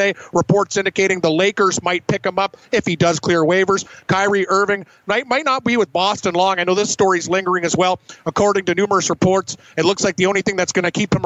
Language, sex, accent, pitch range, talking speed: English, male, American, 180-205 Hz, 235 wpm